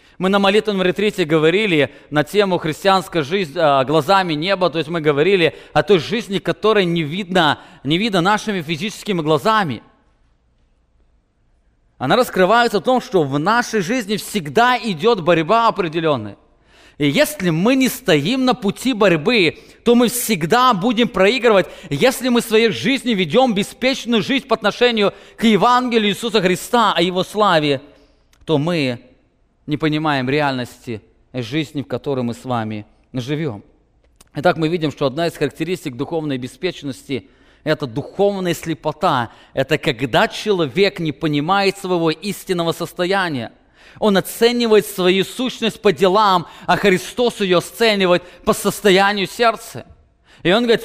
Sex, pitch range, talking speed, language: male, 150-220 Hz, 135 wpm, English